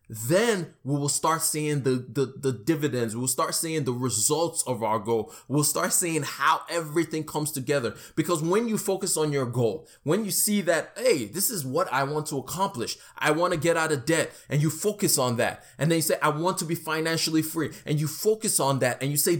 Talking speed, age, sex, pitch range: 225 wpm, 20-39, male, 150-185 Hz